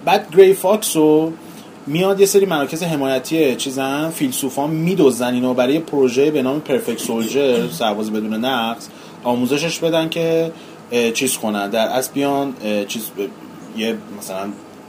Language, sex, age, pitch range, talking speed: Persian, male, 30-49, 115-160 Hz, 135 wpm